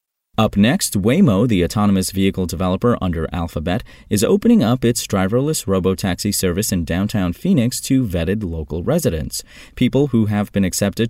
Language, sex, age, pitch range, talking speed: English, male, 30-49, 85-120 Hz, 150 wpm